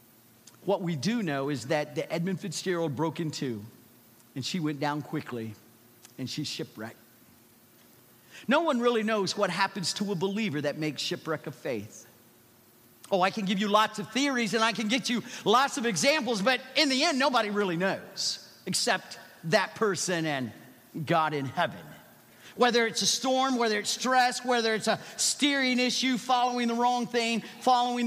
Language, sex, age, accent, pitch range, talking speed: English, male, 50-69, American, 155-250 Hz, 175 wpm